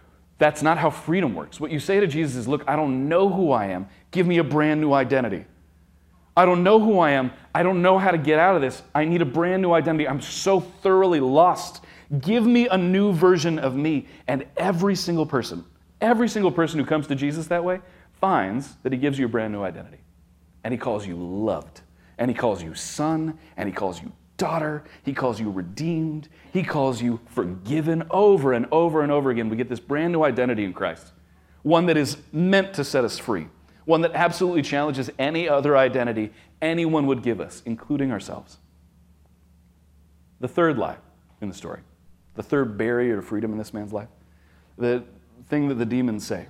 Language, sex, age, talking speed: English, male, 30-49, 205 wpm